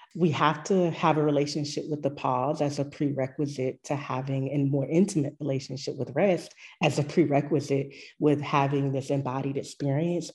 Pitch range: 140-225 Hz